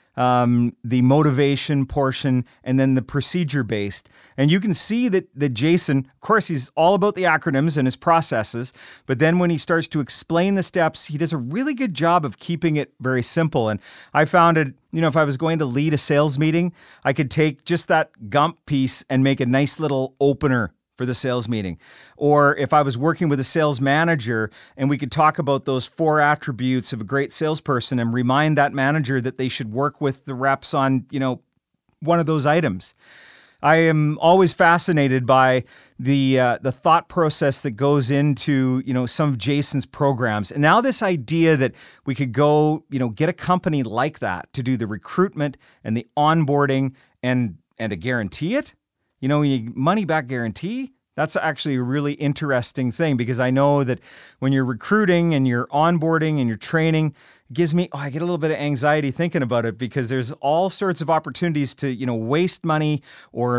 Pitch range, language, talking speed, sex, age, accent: 130-160 Hz, English, 200 wpm, male, 40-59, American